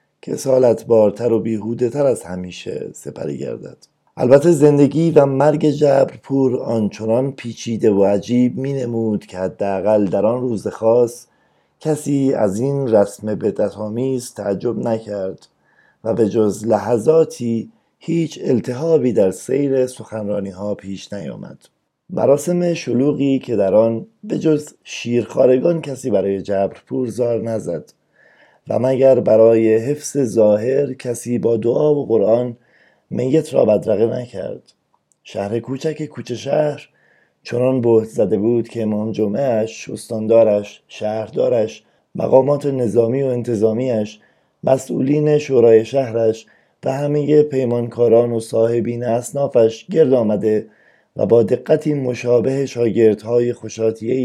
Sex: male